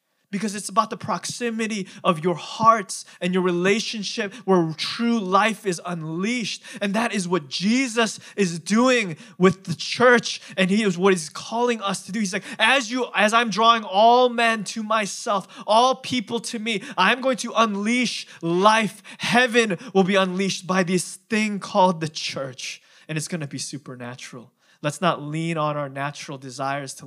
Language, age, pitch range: English, 20-39, 155-220 Hz